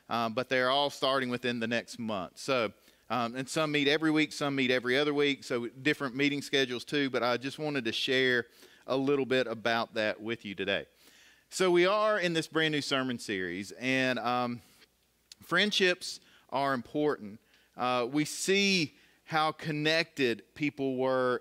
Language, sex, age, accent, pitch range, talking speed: English, male, 40-59, American, 135-180 Hz, 170 wpm